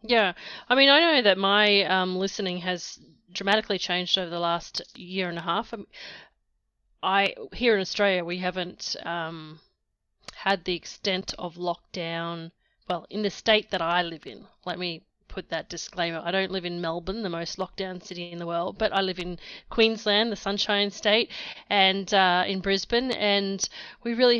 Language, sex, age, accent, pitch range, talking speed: English, female, 30-49, Australian, 180-215 Hz, 170 wpm